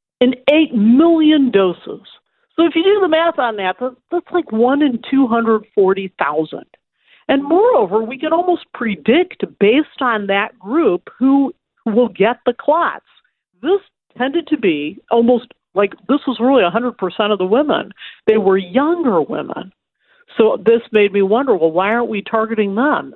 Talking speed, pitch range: 155 wpm, 200-275 Hz